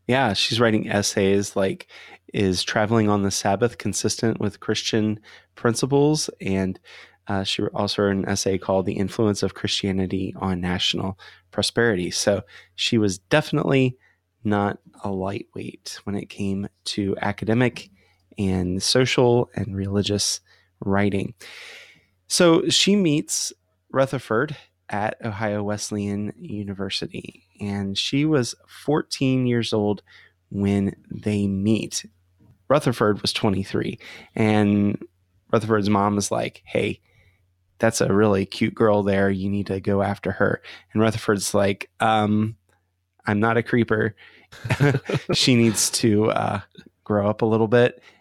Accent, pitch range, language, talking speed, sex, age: American, 100-115 Hz, English, 125 wpm, male, 20-39